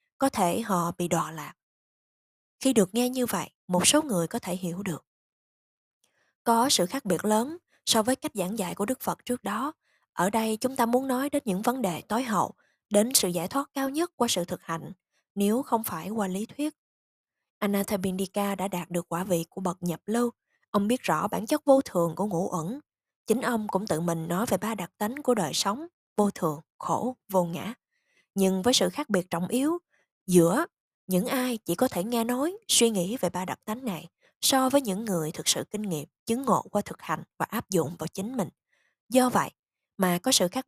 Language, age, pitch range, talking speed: Vietnamese, 20-39, 180-250 Hz, 215 wpm